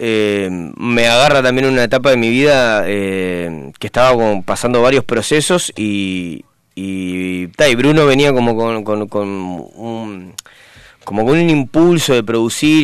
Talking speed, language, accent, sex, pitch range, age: 155 wpm, Spanish, Argentinian, male, 105-140 Hz, 20-39